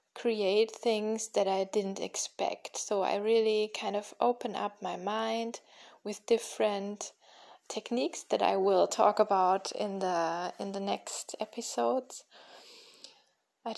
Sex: female